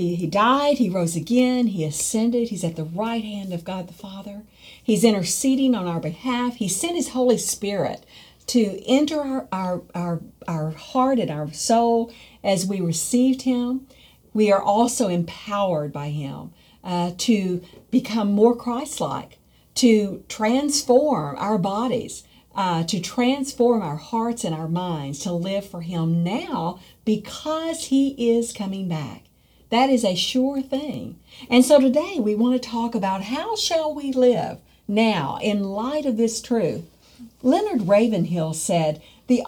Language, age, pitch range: English, 50-69, 175-255 Hz